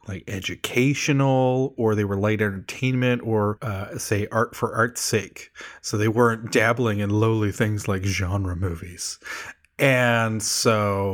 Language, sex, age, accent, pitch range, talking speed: English, male, 30-49, American, 100-125 Hz, 140 wpm